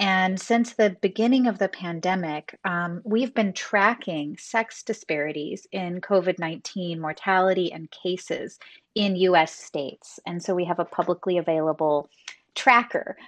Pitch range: 170-215 Hz